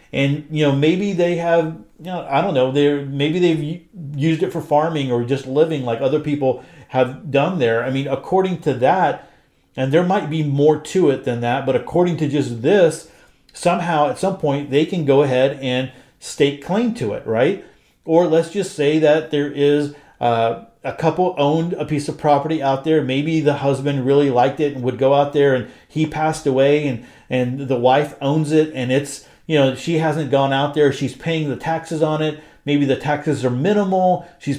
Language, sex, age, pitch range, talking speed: English, male, 40-59, 135-155 Hz, 205 wpm